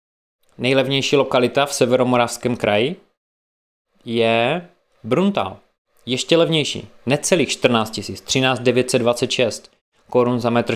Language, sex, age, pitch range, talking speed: Czech, male, 20-39, 110-130 Hz, 95 wpm